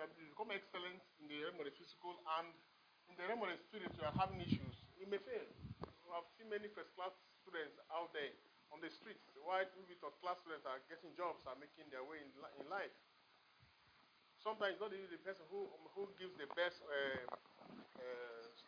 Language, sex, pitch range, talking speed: English, male, 155-205 Hz, 185 wpm